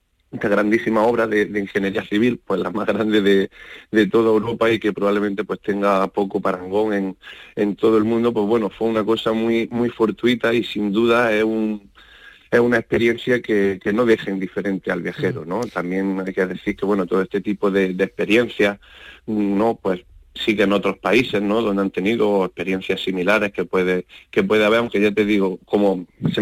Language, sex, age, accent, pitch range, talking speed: Spanish, male, 30-49, Spanish, 100-110 Hz, 195 wpm